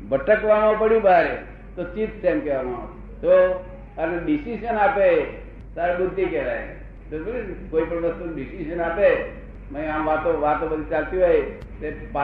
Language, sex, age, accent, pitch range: Gujarati, male, 60-79, native, 165-195 Hz